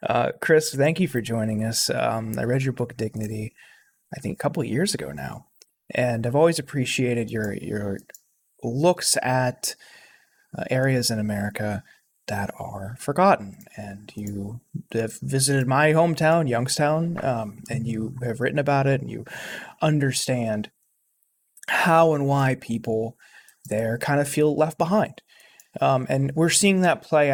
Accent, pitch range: American, 115-150 Hz